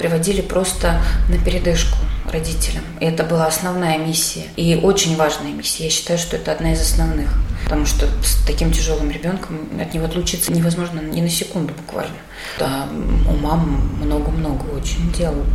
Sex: female